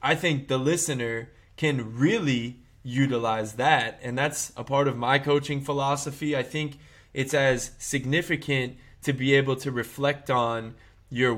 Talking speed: 150 wpm